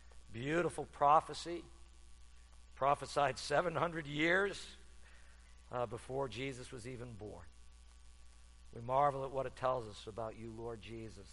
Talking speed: 115 wpm